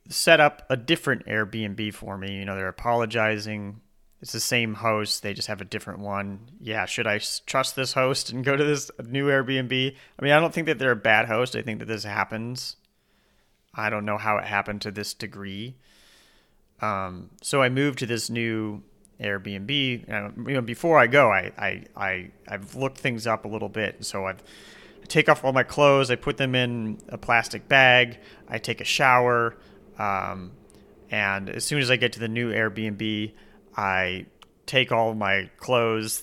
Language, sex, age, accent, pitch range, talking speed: English, male, 30-49, American, 100-125 Hz, 190 wpm